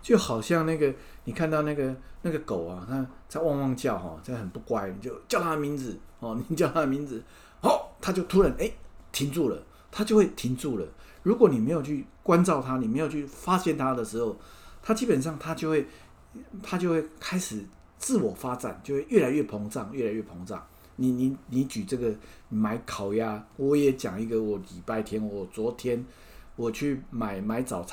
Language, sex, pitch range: English, male, 120-165 Hz